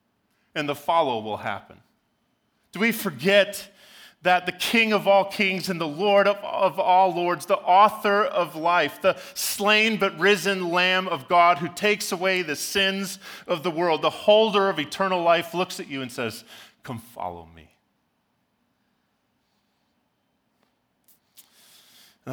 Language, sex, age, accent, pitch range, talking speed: English, male, 30-49, American, 115-185 Hz, 140 wpm